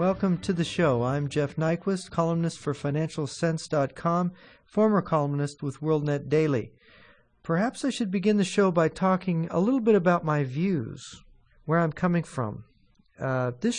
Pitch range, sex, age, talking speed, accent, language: 150-185 Hz, male, 40-59, 155 wpm, American, English